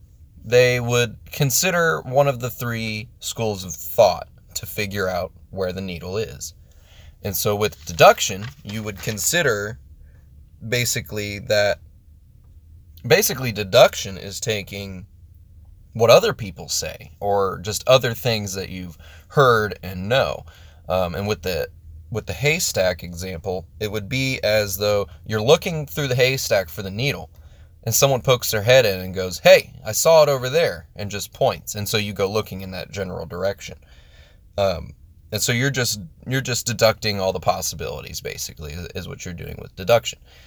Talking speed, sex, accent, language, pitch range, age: 160 wpm, male, American, English, 90-120 Hz, 20-39